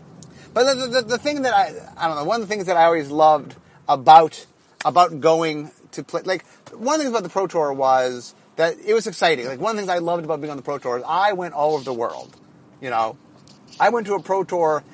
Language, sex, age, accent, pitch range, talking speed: English, male, 30-49, American, 130-180 Hz, 260 wpm